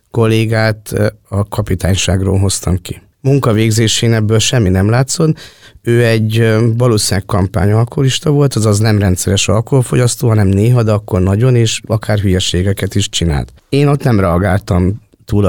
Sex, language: male, Hungarian